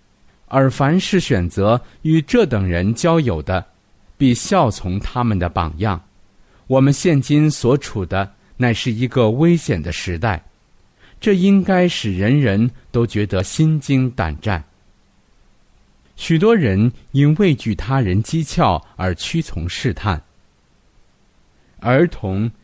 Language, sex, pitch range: Chinese, male, 95-145 Hz